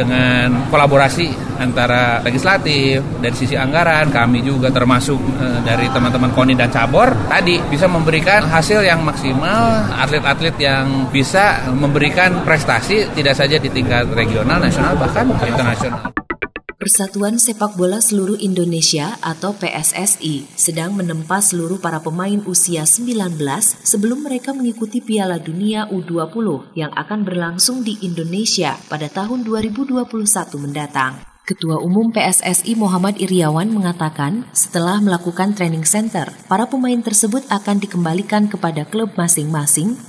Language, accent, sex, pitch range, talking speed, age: Indonesian, native, male, 150-210 Hz, 120 wpm, 30-49